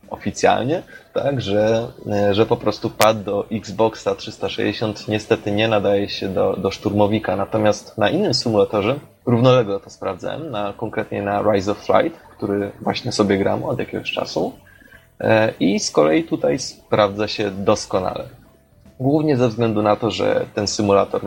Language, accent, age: Polish, native, 20-39